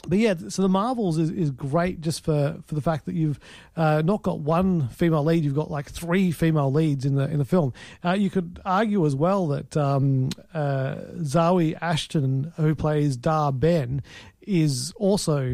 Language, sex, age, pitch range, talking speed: English, male, 40-59, 140-170 Hz, 190 wpm